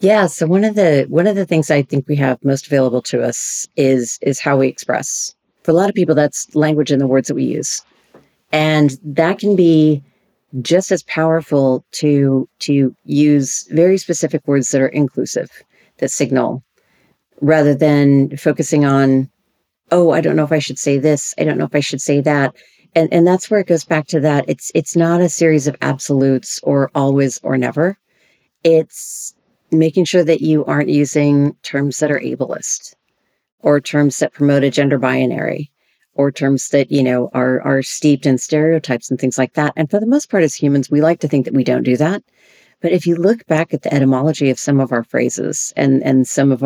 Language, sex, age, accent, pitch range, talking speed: English, female, 50-69, American, 135-160 Hz, 205 wpm